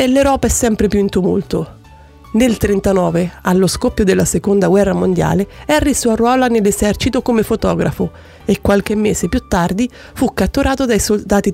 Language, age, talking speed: Italian, 30-49, 155 wpm